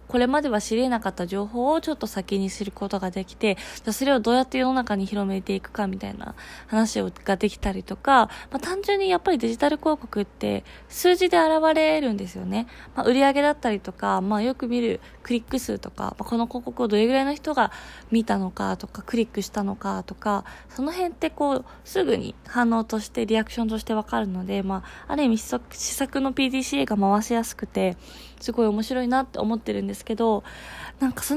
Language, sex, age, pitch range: Japanese, female, 20-39, 205-275 Hz